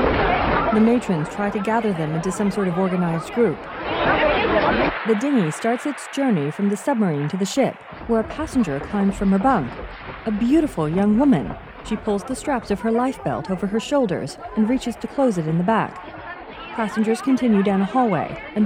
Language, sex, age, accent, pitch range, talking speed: English, female, 40-59, American, 195-255 Hz, 190 wpm